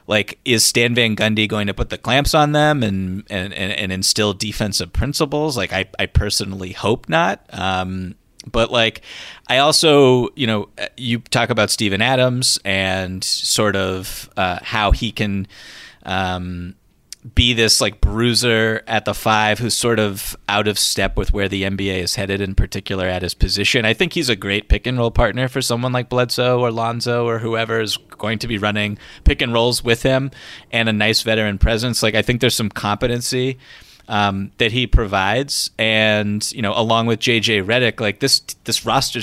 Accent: American